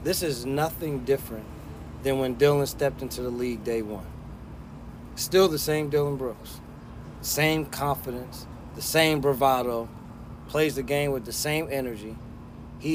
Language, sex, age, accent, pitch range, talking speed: English, male, 30-49, American, 120-150 Hz, 145 wpm